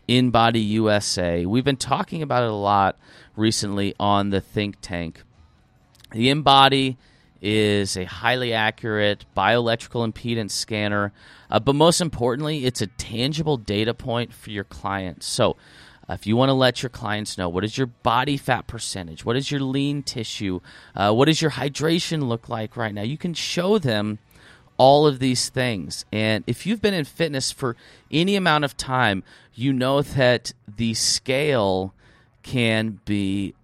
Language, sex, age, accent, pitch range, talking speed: English, male, 30-49, American, 105-140 Hz, 160 wpm